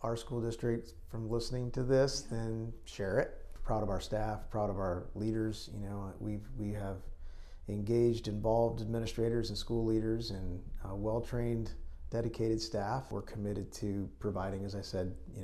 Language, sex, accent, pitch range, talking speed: English, male, American, 95-115 Hz, 165 wpm